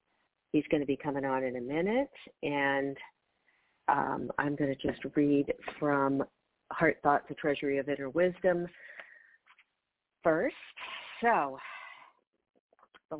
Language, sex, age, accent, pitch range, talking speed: English, female, 40-59, American, 145-175 Hz, 125 wpm